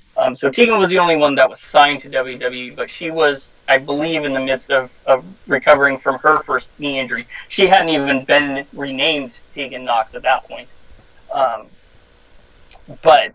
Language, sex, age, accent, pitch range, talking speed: English, male, 20-39, American, 130-150 Hz, 180 wpm